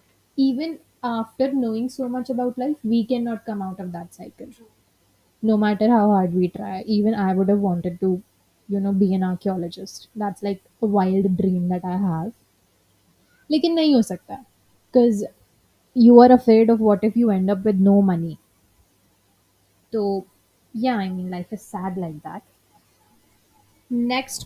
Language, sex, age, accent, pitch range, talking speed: English, female, 20-39, Indian, 175-225 Hz, 160 wpm